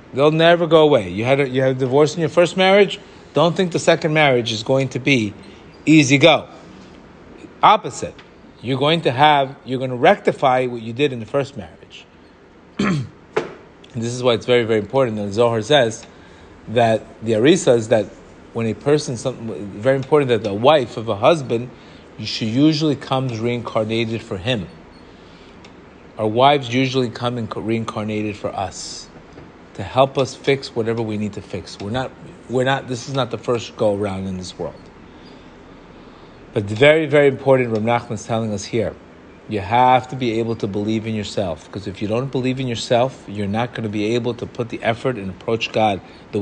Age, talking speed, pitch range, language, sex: 40-59, 185 wpm, 110-140 Hz, English, male